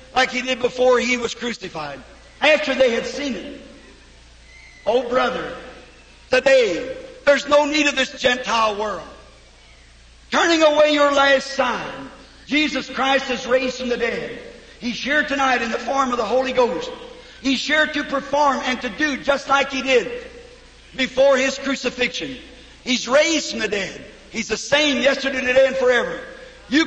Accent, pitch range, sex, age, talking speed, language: American, 230-275 Hz, male, 50-69, 160 wpm, English